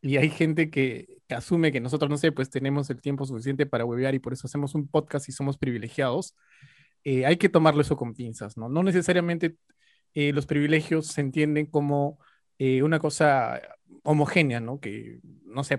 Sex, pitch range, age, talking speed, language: male, 135-170 Hz, 30-49, 190 wpm, Spanish